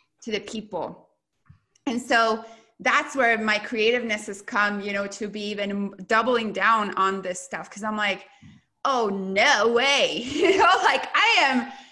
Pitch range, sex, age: 195-250 Hz, female, 20-39